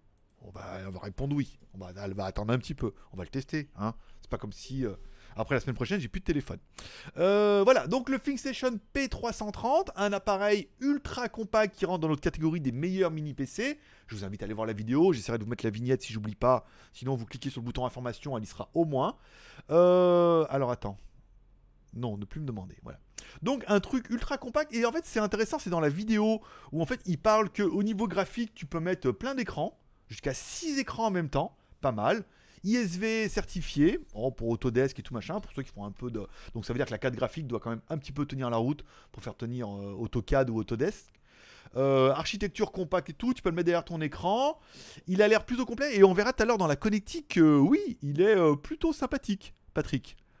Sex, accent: male, French